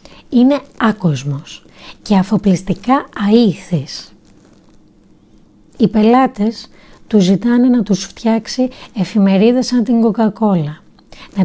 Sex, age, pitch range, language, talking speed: female, 30-49, 180-235 Hz, Greek, 90 wpm